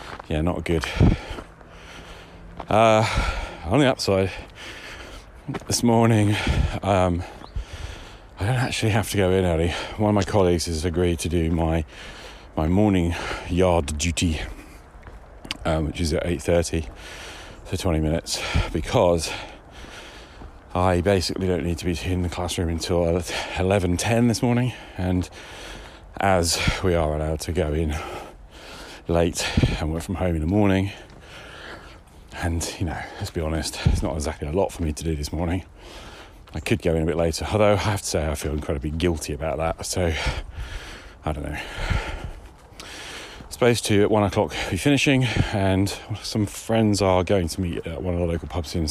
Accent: British